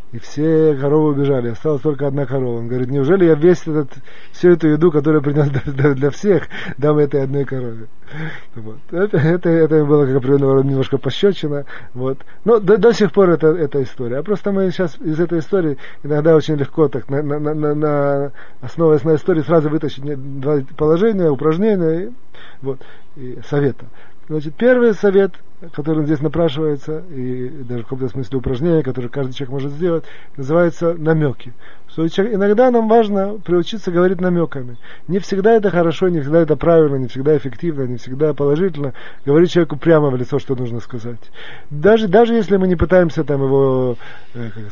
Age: 30-49